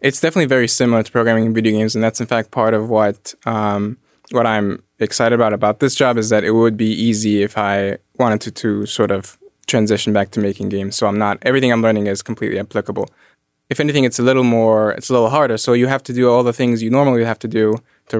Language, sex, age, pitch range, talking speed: English, male, 20-39, 110-125 Hz, 245 wpm